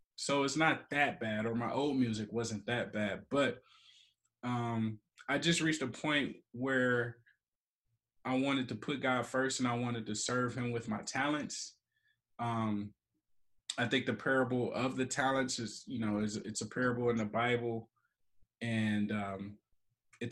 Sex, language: male, English